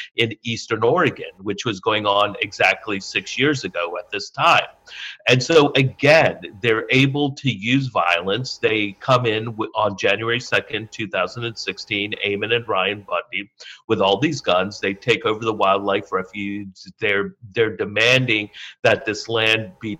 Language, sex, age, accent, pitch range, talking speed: English, male, 50-69, American, 100-120 Hz, 150 wpm